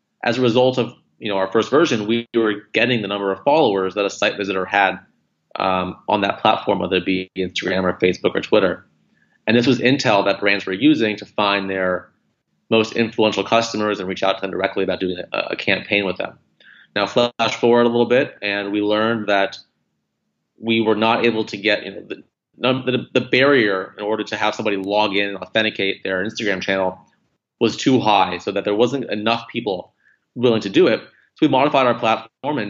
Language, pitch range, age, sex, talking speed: English, 95-115 Hz, 30-49, male, 205 wpm